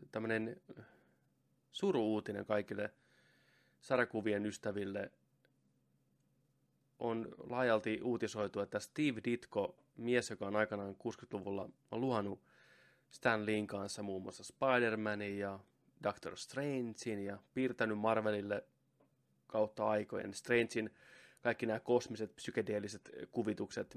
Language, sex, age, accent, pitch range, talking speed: Finnish, male, 20-39, native, 105-120 Hz, 90 wpm